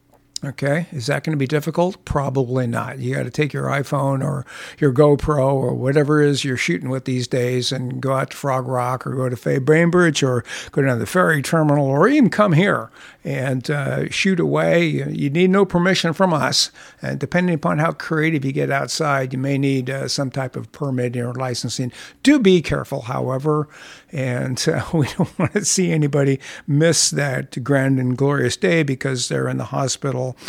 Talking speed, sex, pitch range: 195 wpm, male, 130-165 Hz